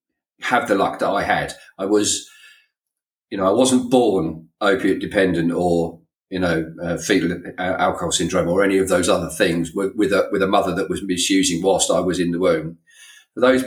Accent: British